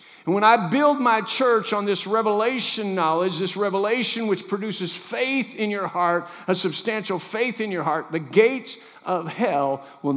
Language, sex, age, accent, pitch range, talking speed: English, male, 50-69, American, 180-225 Hz, 170 wpm